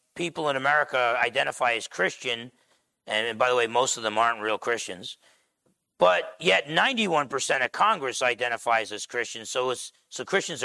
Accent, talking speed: American, 160 wpm